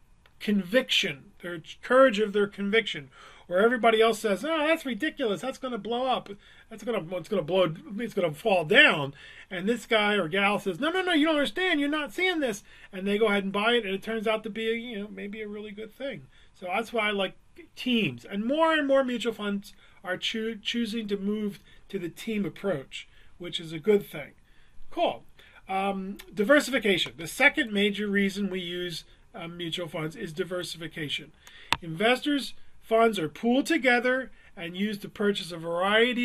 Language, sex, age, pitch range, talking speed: English, male, 40-59, 185-235 Hz, 195 wpm